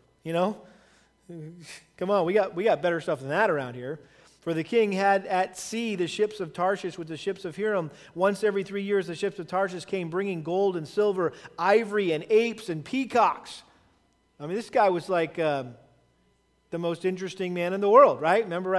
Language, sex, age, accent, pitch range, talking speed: English, male, 40-59, American, 175-210 Hz, 200 wpm